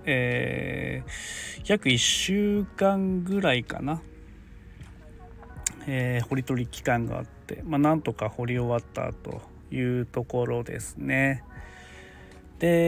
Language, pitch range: Japanese, 110-160 Hz